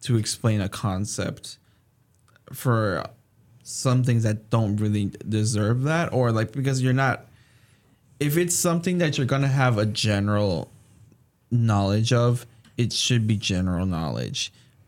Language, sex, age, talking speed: English, male, 20-39, 135 wpm